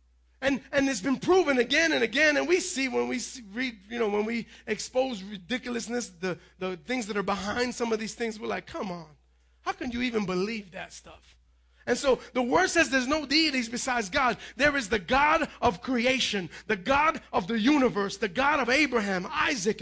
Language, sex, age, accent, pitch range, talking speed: English, male, 30-49, American, 210-280 Hz, 205 wpm